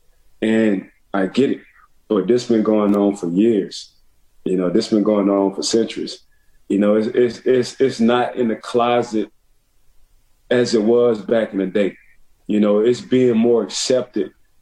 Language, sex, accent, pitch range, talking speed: English, male, American, 105-125 Hz, 170 wpm